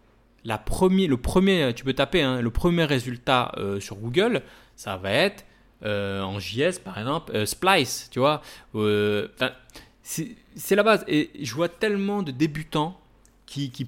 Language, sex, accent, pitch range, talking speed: French, male, French, 115-155 Hz, 170 wpm